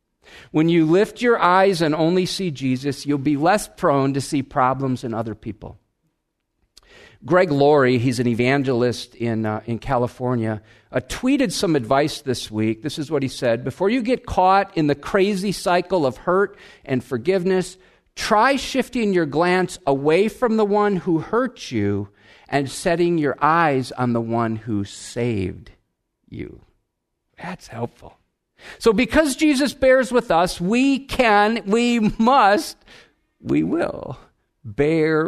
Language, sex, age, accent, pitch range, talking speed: English, male, 50-69, American, 125-205 Hz, 150 wpm